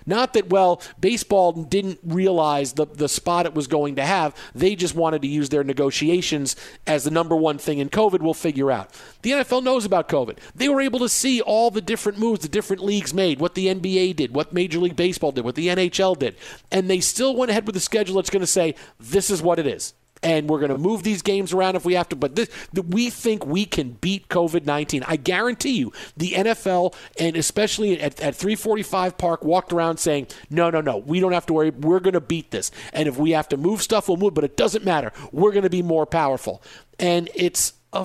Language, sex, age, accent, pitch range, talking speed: English, male, 40-59, American, 155-205 Hz, 235 wpm